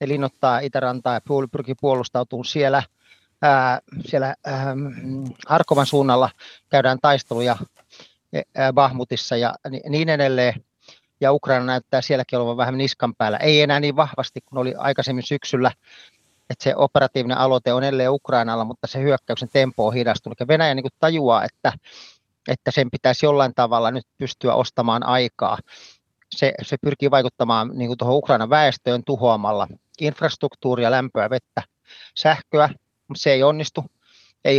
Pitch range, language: 120-140 Hz, Finnish